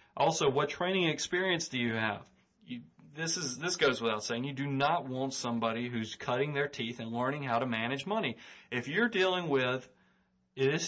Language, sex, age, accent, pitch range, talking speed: English, male, 40-59, American, 120-145 Hz, 190 wpm